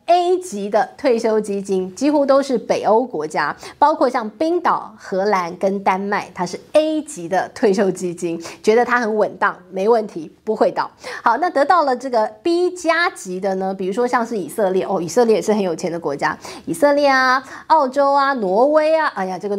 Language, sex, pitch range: Chinese, female, 195-275 Hz